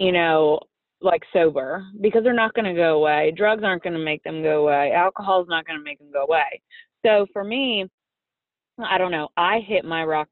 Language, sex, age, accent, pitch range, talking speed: English, female, 20-39, American, 160-185 Hz, 220 wpm